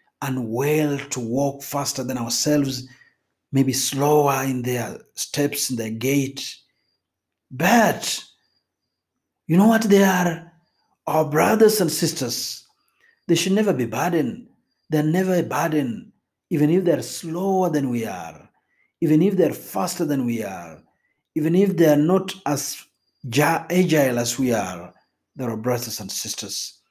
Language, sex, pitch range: Swahili, male, 130-185 Hz